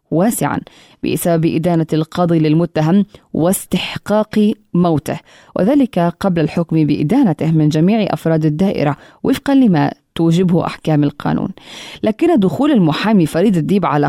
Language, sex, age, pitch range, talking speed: Arabic, female, 20-39, 155-200 Hz, 110 wpm